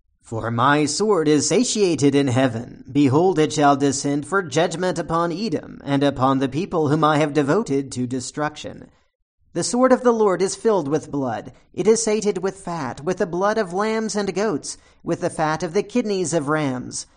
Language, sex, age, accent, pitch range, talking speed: English, male, 40-59, American, 150-195 Hz, 190 wpm